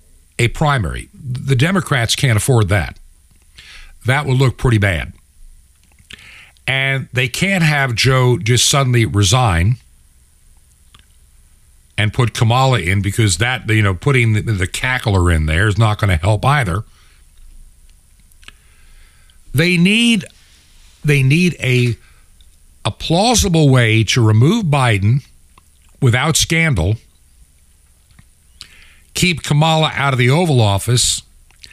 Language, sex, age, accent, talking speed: English, male, 60-79, American, 115 wpm